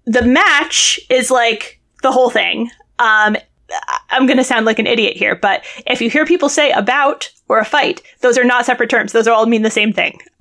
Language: English